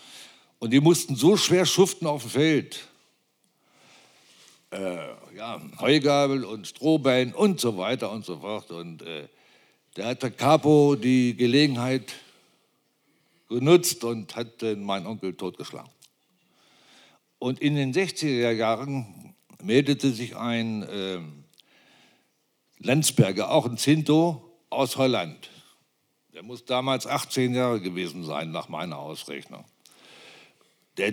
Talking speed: 120 wpm